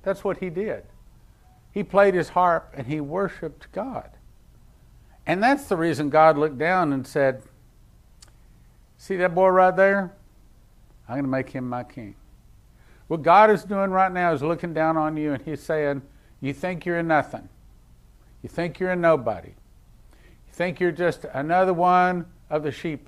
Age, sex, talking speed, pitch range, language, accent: 50-69, male, 170 wpm, 125-180 Hz, English, American